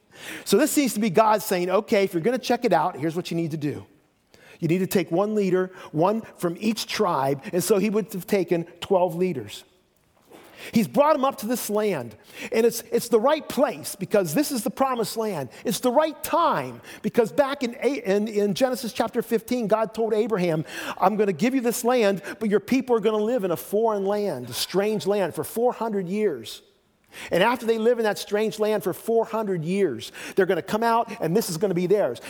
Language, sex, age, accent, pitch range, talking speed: English, male, 50-69, American, 180-230 Hz, 225 wpm